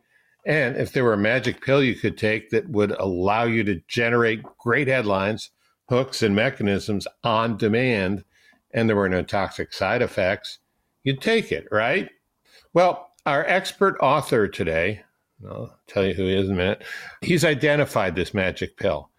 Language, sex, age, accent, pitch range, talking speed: English, male, 60-79, American, 95-125 Hz, 165 wpm